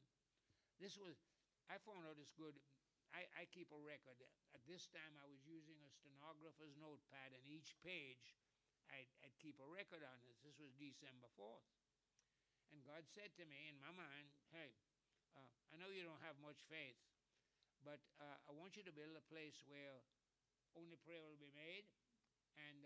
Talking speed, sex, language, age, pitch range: 180 wpm, male, English, 60-79, 140-165 Hz